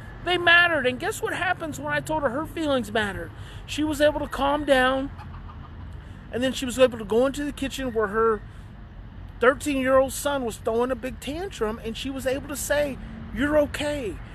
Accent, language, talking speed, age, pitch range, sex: American, English, 190 wpm, 30-49, 195-270 Hz, male